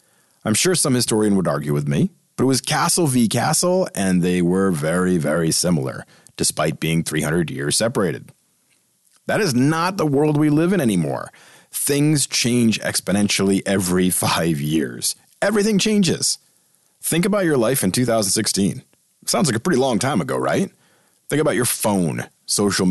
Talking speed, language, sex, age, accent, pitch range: 160 wpm, English, male, 40-59, American, 95-155 Hz